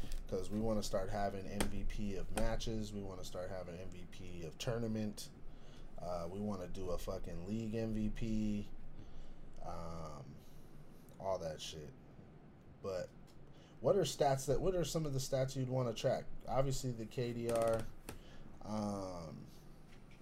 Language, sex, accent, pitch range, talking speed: English, male, American, 90-115 Hz, 145 wpm